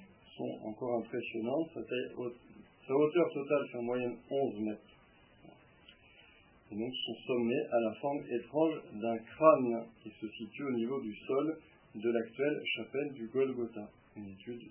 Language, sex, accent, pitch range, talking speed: French, male, French, 110-135 Hz, 150 wpm